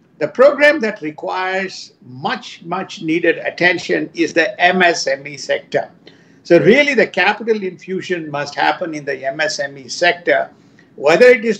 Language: English